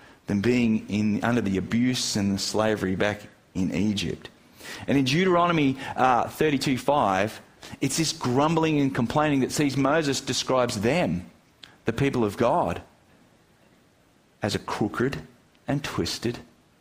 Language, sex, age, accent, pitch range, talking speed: English, male, 40-59, Australian, 110-140 Hz, 130 wpm